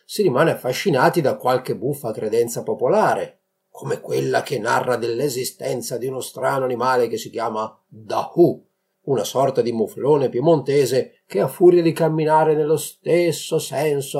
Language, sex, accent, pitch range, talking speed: Italian, male, native, 145-235 Hz, 145 wpm